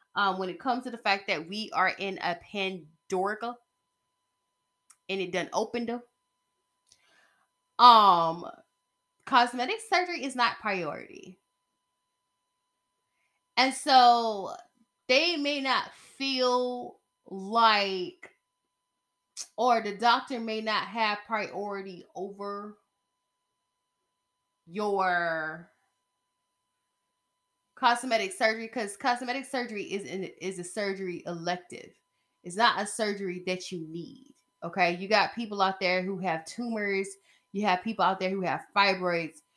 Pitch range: 190-275 Hz